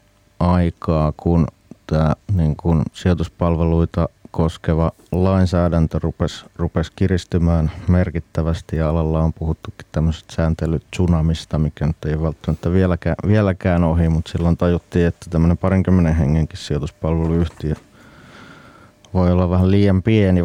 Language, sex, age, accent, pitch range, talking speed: Finnish, male, 30-49, native, 80-95 Hz, 110 wpm